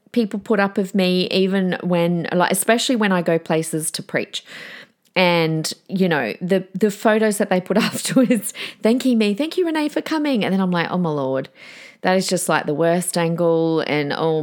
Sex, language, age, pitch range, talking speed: female, English, 30-49, 165-205 Hz, 200 wpm